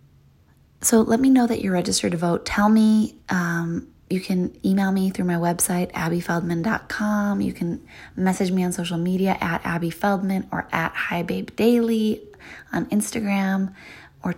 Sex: female